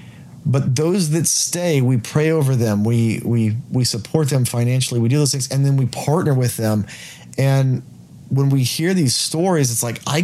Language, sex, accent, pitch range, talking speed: English, male, American, 115-145 Hz, 195 wpm